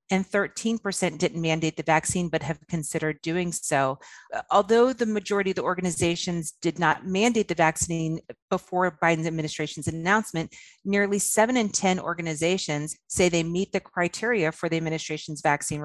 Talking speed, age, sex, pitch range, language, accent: 150 wpm, 30-49, female, 160-185 Hz, English, American